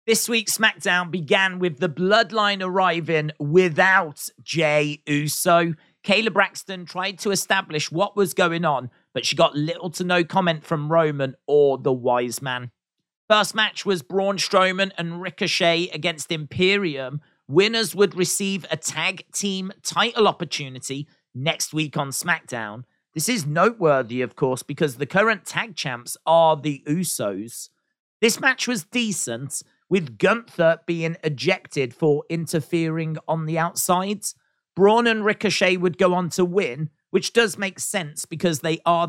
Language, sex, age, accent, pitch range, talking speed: English, male, 40-59, British, 150-190 Hz, 145 wpm